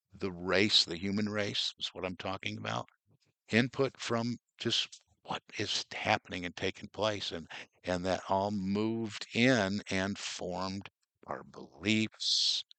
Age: 60-79